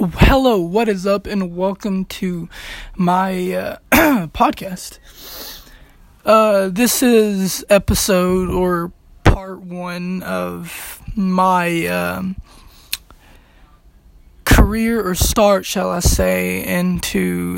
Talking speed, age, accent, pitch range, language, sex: 90 wpm, 20-39, American, 165-195 Hz, English, male